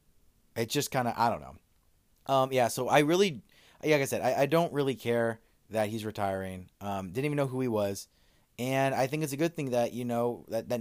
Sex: male